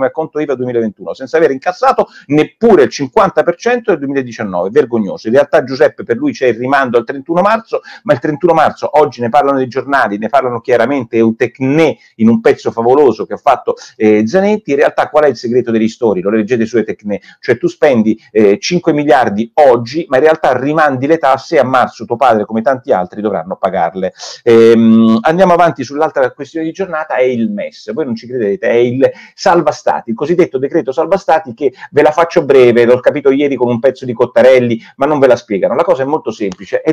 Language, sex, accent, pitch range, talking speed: Italian, male, native, 120-175 Hz, 210 wpm